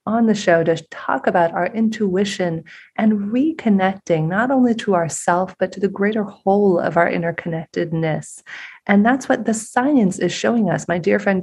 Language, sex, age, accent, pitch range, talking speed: English, female, 30-49, American, 170-210 Hz, 175 wpm